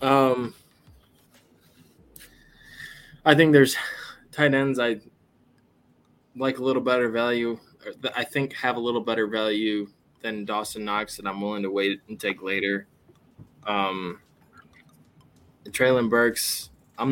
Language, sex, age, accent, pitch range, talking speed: English, male, 20-39, American, 105-125 Hz, 125 wpm